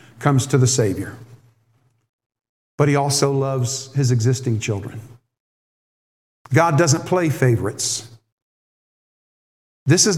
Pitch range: 125-170 Hz